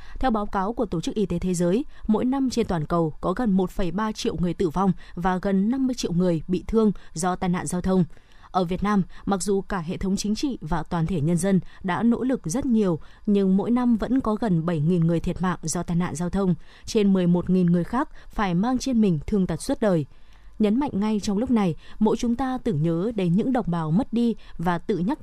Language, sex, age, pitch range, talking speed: Vietnamese, female, 20-39, 180-225 Hz, 240 wpm